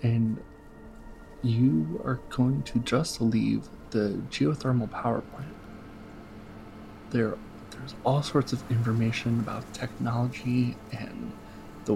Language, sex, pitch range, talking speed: English, male, 100-120 Hz, 105 wpm